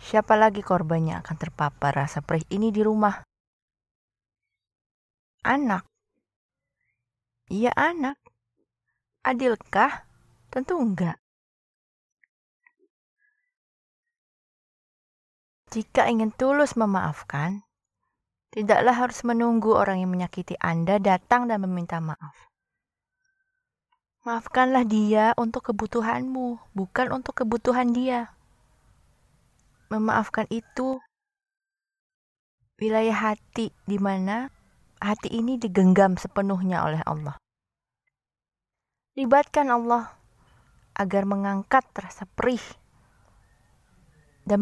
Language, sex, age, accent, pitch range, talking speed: Indonesian, female, 20-39, native, 180-245 Hz, 80 wpm